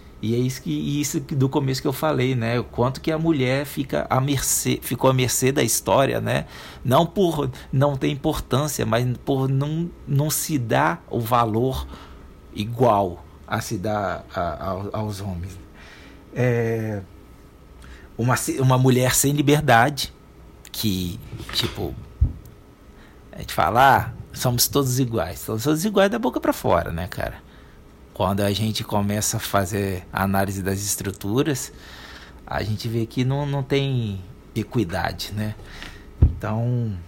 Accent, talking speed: Brazilian, 135 wpm